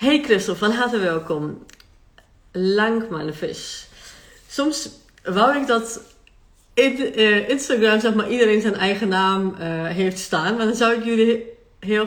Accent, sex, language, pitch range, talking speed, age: Dutch, female, Dutch, 170-225 Hz, 140 wpm, 40-59